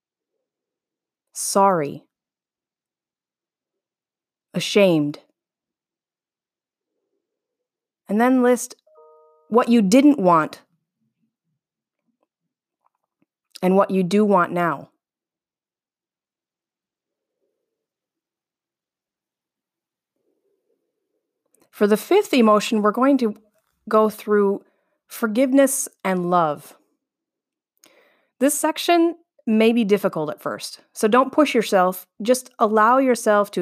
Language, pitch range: English, 175-260 Hz